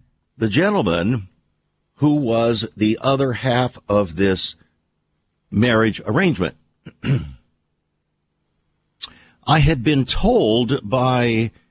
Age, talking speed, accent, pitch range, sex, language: 60-79, 80 wpm, American, 95-130 Hz, male, English